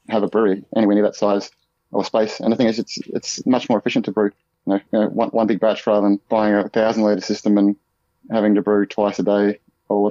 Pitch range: 100-115 Hz